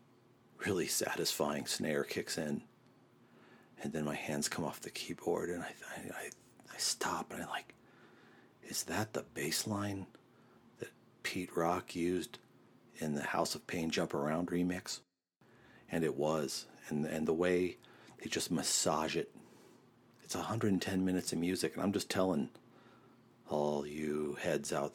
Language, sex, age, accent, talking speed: English, male, 50-69, American, 150 wpm